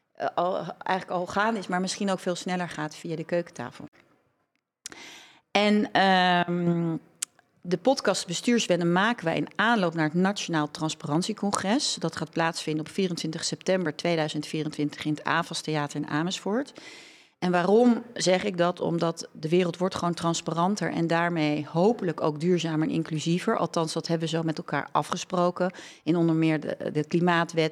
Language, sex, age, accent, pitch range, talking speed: Dutch, female, 40-59, Dutch, 160-190 Hz, 150 wpm